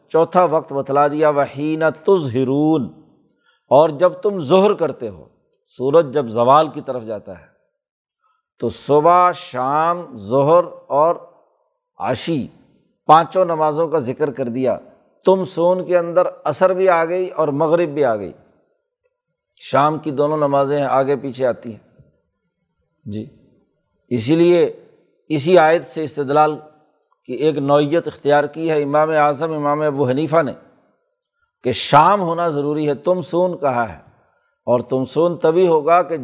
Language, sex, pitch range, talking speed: Urdu, male, 145-175 Hz, 145 wpm